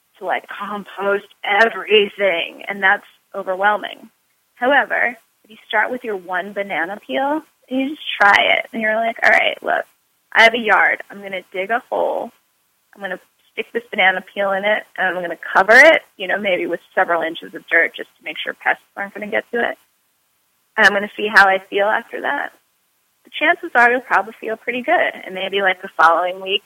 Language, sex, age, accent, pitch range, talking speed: English, female, 20-39, American, 185-260 Hz, 200 wpm